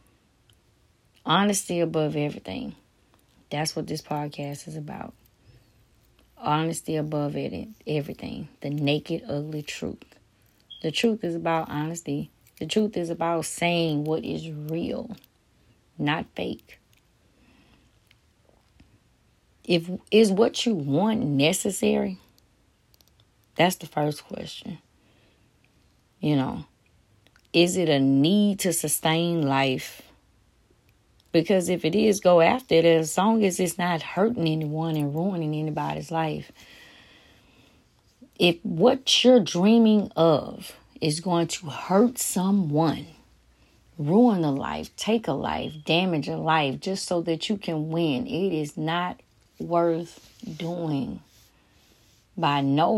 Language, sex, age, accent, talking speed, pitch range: English, female, 30-49, American, 115 wpm, 145-185 Hz